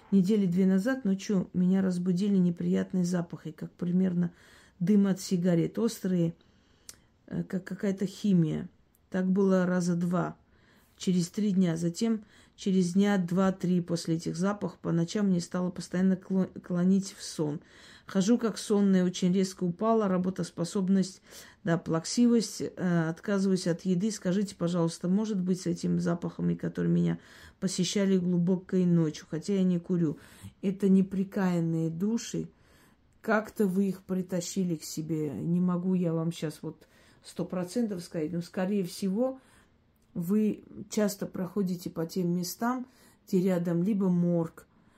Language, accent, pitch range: Russian, native, 170-195 Hz